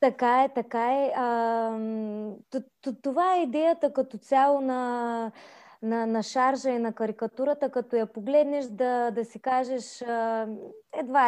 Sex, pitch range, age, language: female, 225-270 Hz, 20-39, Bulgarian